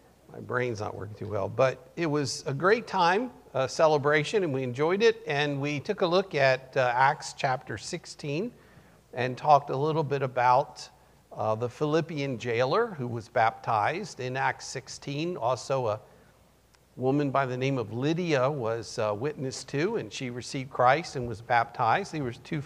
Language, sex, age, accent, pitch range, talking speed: English, male, 50-69, American, 120-155 Hz, 175 wpm